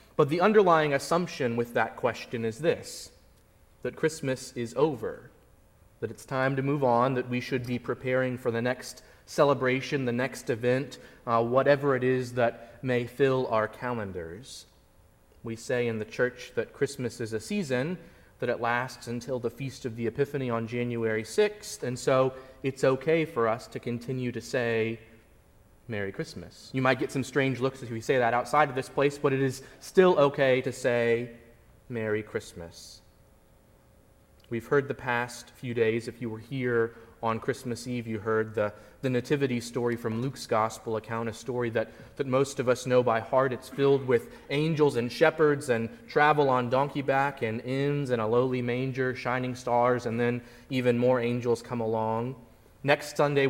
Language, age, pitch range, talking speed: English, 30-49, 115-135 Hz, 175 wpm